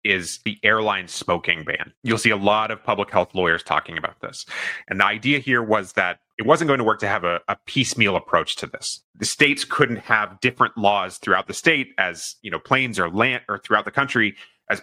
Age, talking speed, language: 30-49, 225 wpm, English